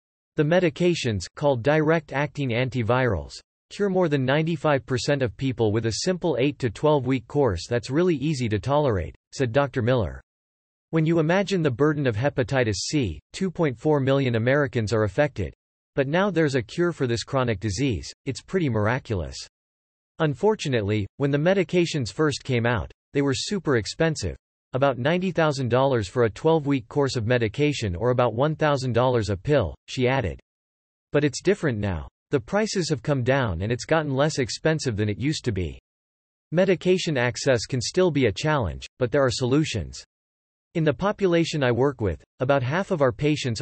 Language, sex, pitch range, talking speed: English, male, 110-150 Hz, 160 wpm